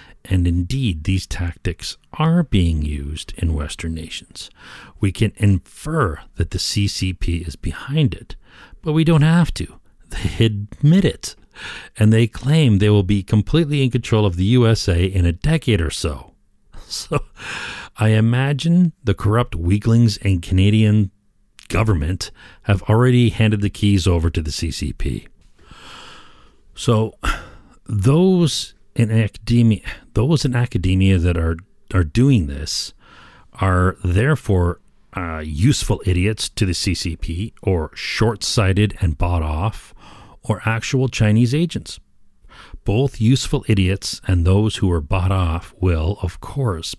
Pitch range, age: 90-115 Hz, 40-59